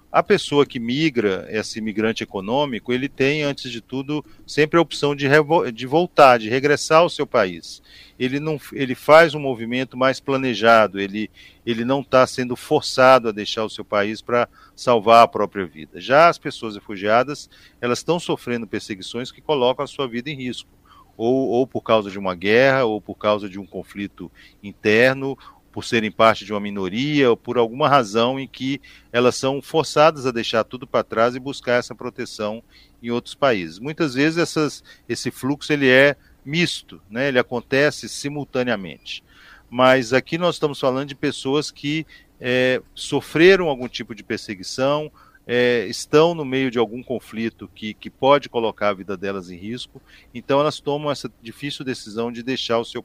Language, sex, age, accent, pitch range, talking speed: Portuguese, male, 40-59, Brazilian, 110-145 Hz, 170 wpm